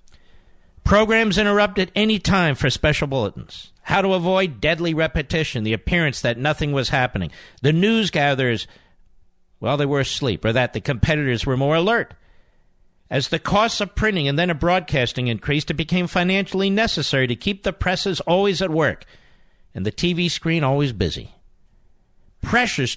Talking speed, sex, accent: 155 wpm, male, American